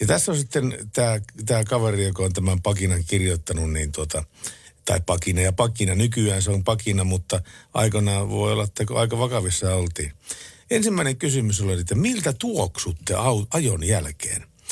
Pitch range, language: 90-120 Hz, Finnish